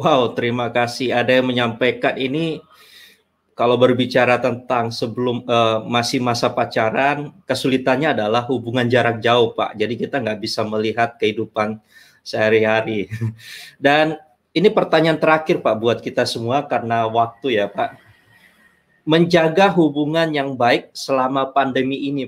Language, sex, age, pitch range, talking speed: Malay, male, 20-39, 115-140 Hz, 125 wpm